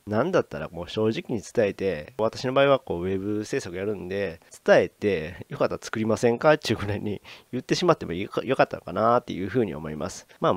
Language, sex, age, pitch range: Japanese, male, 40-59, 100-135 Hz